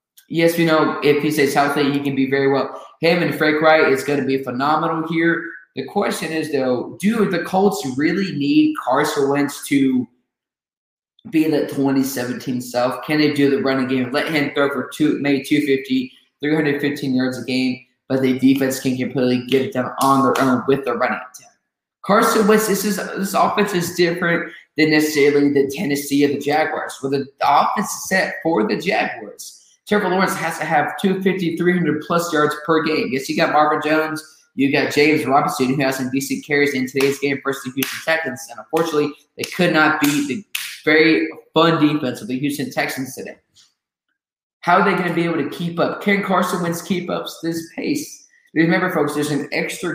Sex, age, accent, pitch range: male, 20-39, American, 140-175 Hz